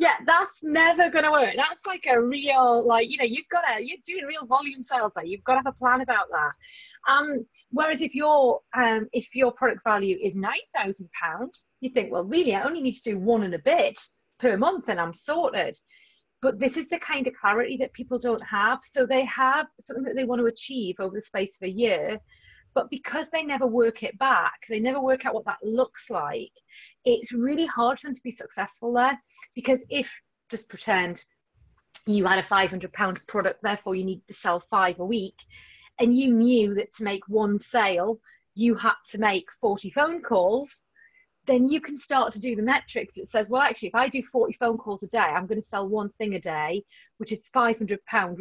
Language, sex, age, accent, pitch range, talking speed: English, female, 30-49, British, 210-270 Hz, 215 wpm